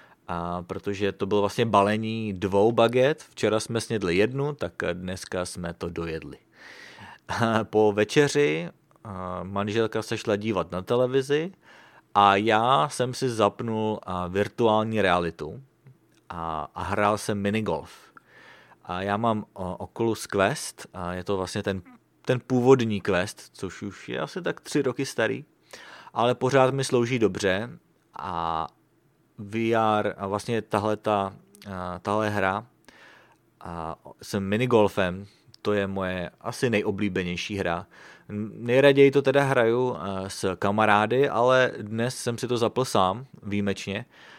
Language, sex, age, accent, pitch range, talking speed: English, male, 30-49, Czech, 95-120 Hz, 125 wpm